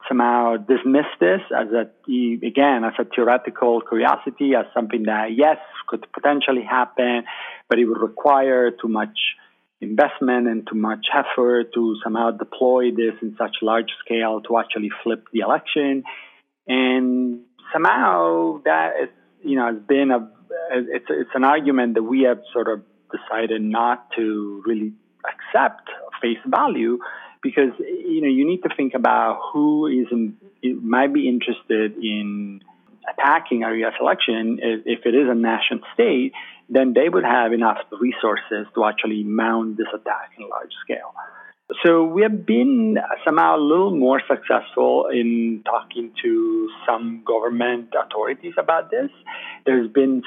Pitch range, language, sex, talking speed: 115-140 Hz, English, male, 145 wpm